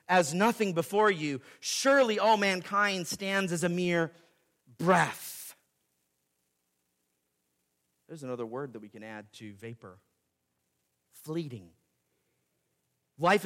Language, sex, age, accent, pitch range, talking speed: English, male, 40-59, American, 150-215 Hz, 105 wpm